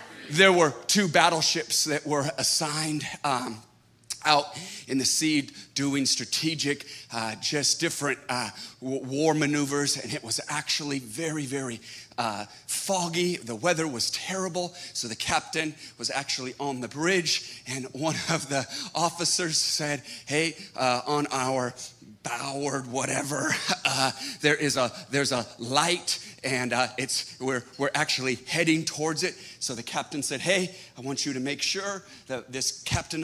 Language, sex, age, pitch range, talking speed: English, male, 30-49, 130-170 Hz, 150 wpm